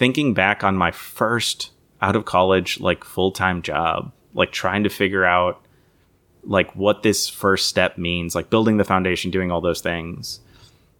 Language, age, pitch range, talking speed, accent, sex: English, 30-49, 90-110 Hz, 165 wpm, American, male